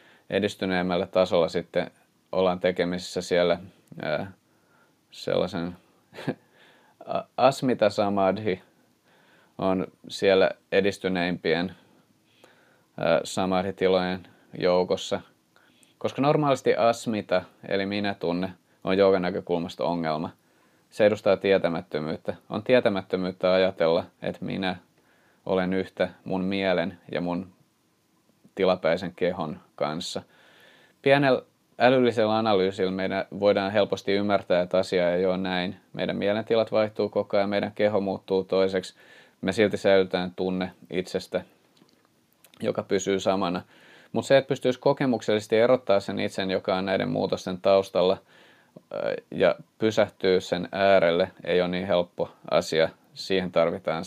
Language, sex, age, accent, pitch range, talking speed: Finnish, male, 30-49, native, 90-105 Hz, 105 wpm